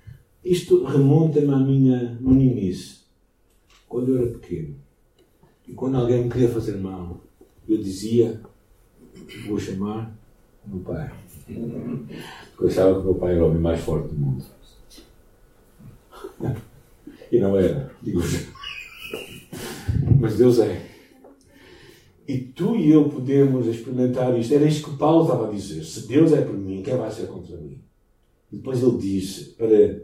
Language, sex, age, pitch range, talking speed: Portuguese, male, 60-79, 110-150 Hz, 140 wpm